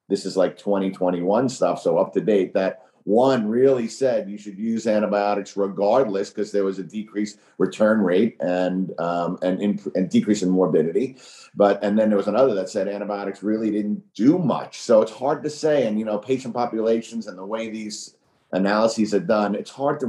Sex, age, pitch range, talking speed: male, 50-69, 100-120 Hz, 195 wpm